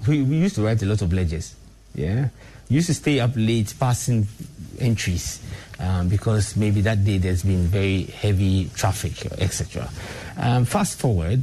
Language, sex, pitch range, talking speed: English, male, 100-130 Hz, 170 wpm